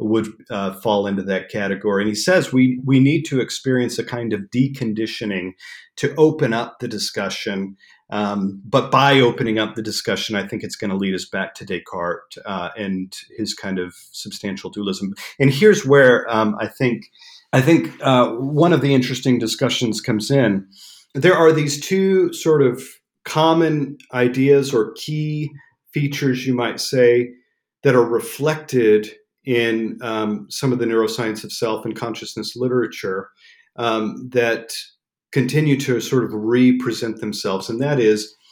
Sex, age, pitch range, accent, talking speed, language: male, 40-59, 110-135 Hz, American, 160 wpm, English